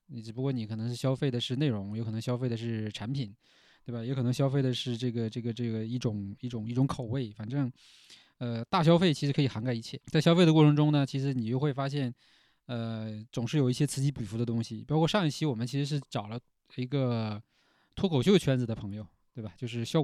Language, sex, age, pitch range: Chinese, male, 20-39, 115-140 Hz